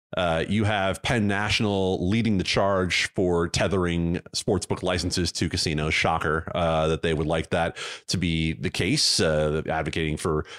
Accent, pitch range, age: American, 85-115 Hz, 30-49